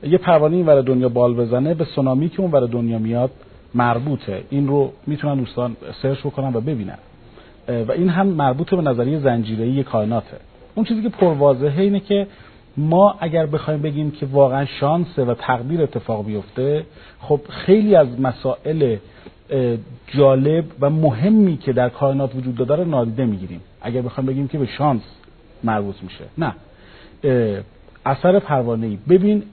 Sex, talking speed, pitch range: male, 150 wpm, 120-165 Hz